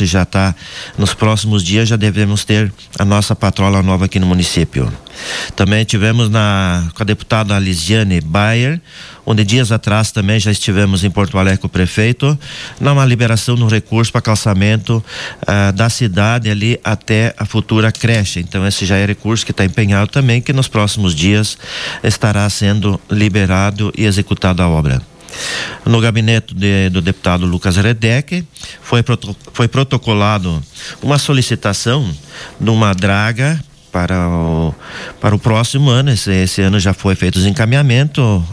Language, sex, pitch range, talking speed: Portuguese, male, 100-115 Hz, 150 wpm